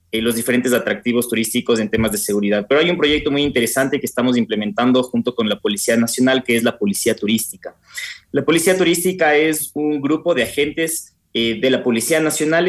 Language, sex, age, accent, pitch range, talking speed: Spanish, male, 30-49, Mexican, 115-150 Hz, 190 wpm